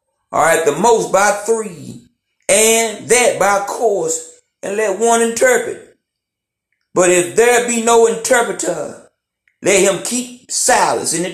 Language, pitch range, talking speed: English, 180-240 Hz, 145 wpm